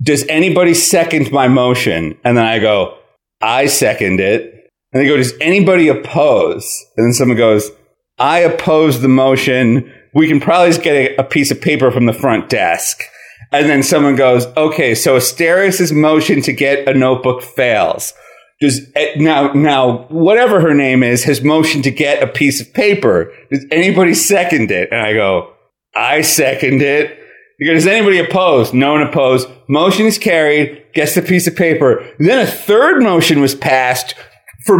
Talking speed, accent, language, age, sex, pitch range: 175 wpm, American, English, 40-59, male, 135-195 Hz